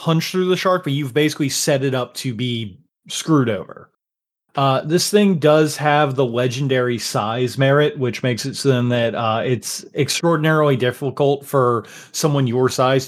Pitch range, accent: 125-155 Hz, American